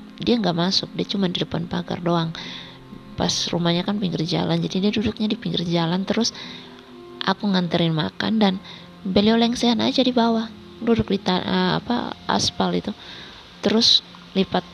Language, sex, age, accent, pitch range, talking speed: Indonesian, female, 20-39, native, 160-190 Hz, 155 wpm